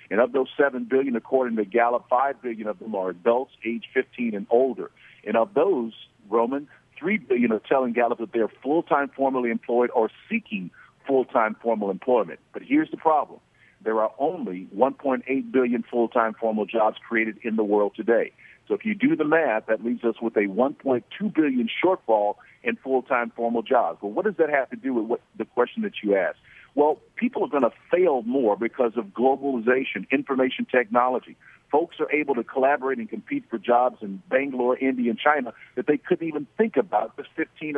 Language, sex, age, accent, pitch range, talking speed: English, male, 50-69, American, 115-155 Hz, 185 wpm